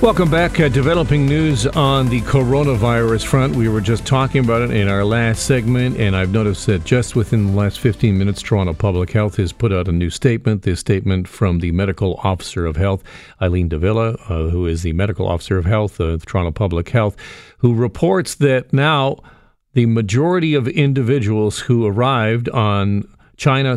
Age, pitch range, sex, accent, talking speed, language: 50-69, 95-135 Hz, male, American, 185 wpm, English